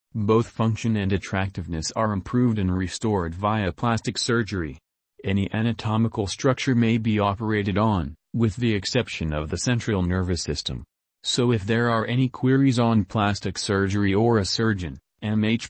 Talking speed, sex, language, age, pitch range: 150 wpm, male, English, 30-49, 95-115 Hz